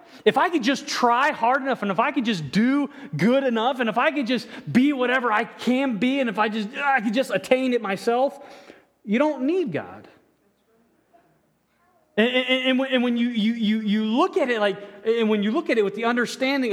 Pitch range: 180-250 Hz